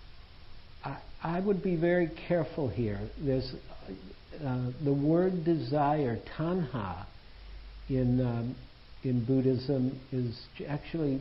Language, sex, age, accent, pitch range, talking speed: English, male, 60-79, American, 110-145 Hz, 90 wpm